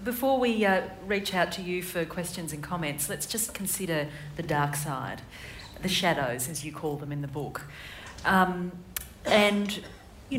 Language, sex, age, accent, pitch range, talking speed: English, female, 40-59, Australian, 145-185 Hz, 165 wpm